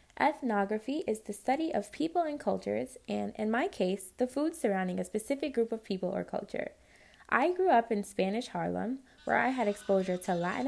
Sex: female